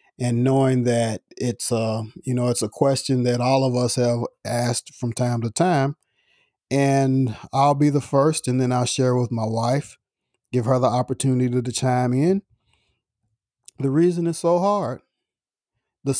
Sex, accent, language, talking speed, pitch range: male, American, English, 165 wpm, 120-145 Hz